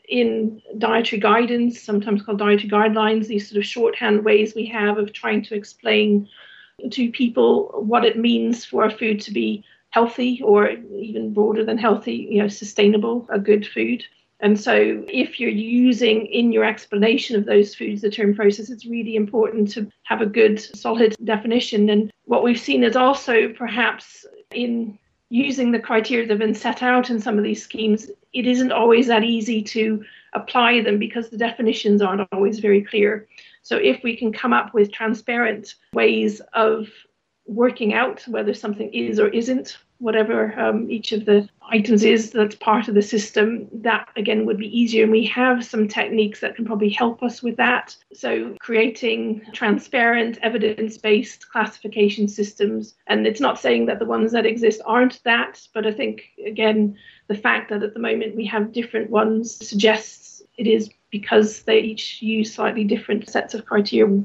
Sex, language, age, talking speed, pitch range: female, English, 50-69, 175 wpm, 210-230 Hz